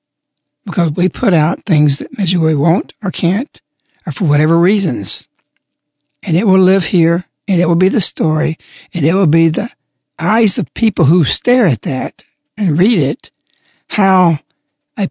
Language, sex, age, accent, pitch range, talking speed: English, male, 60-79, American, 155-200 Hz, 170 wpm